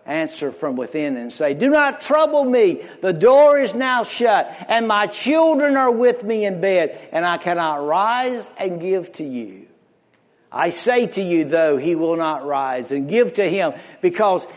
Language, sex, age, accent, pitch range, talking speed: English, male, 60-79, American, 165-260 Hz, 180 wpm